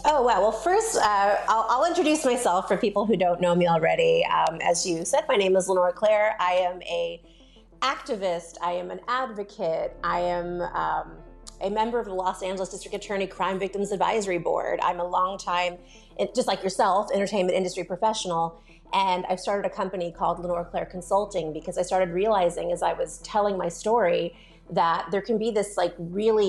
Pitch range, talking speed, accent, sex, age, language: 175-215 Hz, 190 wpm, American, female, 30-49, English